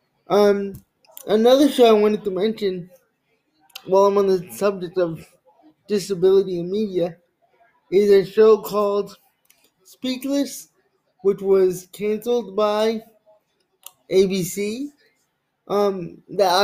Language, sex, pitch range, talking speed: English, male, 175-210 Hz, 100 wpm